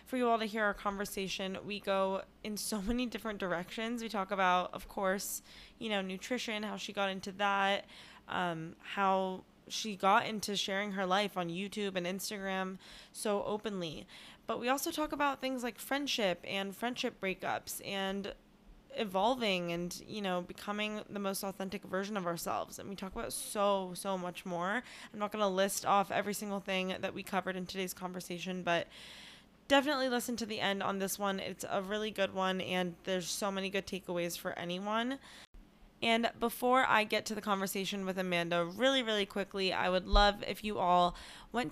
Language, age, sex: English, 10-29, female